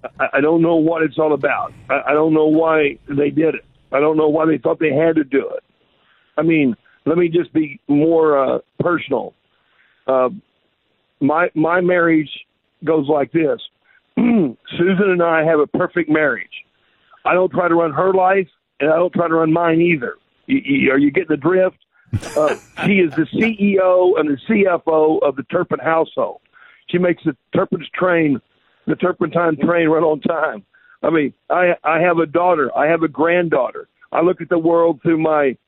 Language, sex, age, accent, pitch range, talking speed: English, male, 50-69, American, 150-180 Hz, 190 wpm